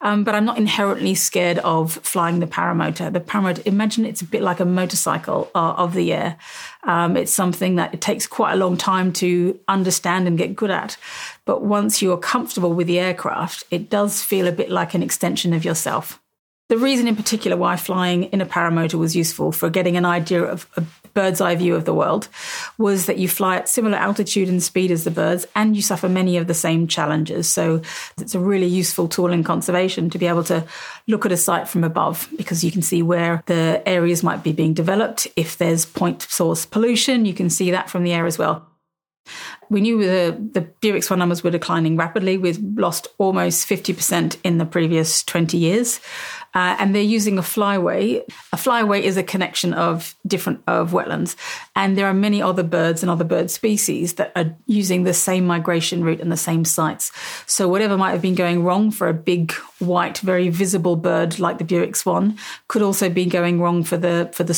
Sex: female